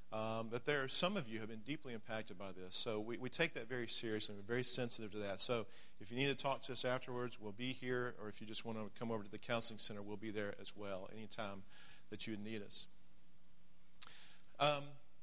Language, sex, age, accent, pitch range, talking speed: English, male, 40-59, American, 110-140 Hz, 245 wpm